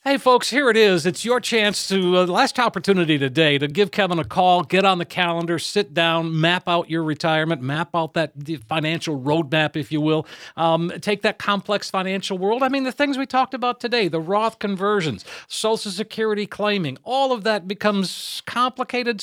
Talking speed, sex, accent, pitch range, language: 190 wpm, male, American, 160-210 Hz, English